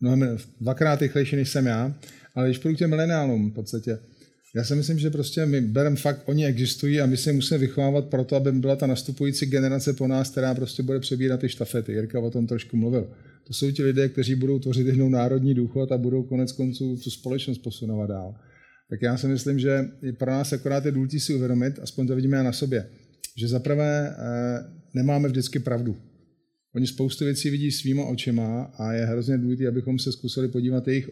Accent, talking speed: native, 200 wpm